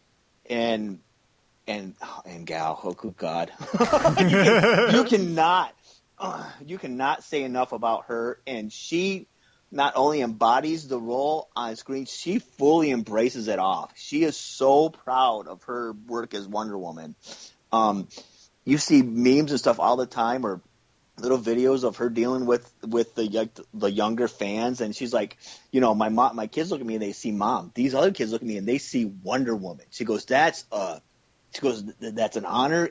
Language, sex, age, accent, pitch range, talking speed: English, male, 30-49, American, 115-160 Hz, 185 wpm